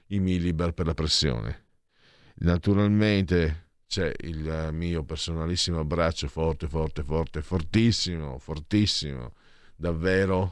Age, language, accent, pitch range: 50-69, Italian, native, 75-90 Hz